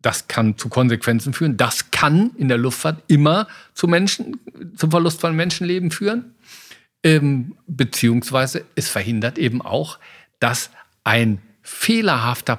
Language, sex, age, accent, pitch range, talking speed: German, male, 50-69, German, 120-165 Hz, 120 wpm